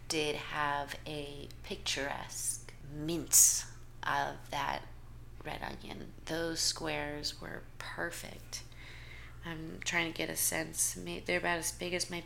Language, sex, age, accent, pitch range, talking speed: English, female, 30-49, American, 125-175 Hz, 120 wpm